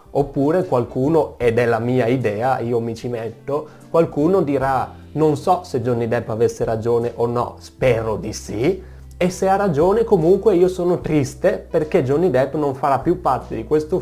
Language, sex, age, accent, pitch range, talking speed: Italian, male, 30-49, native, 115-150 Hz, 180 wpm